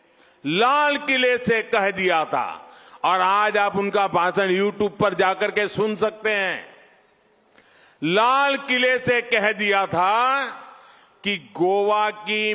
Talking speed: 70 wpm